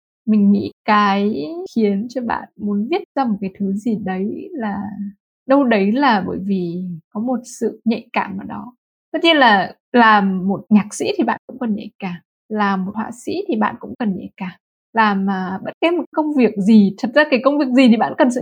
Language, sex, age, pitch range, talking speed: Vietnamese, female, 20-39, 205-260 Hz, 220 wpm